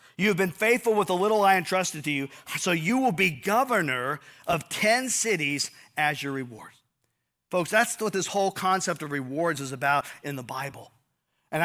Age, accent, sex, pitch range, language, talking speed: 50-69, American, male, 140-190 Hz, English, 185 wpm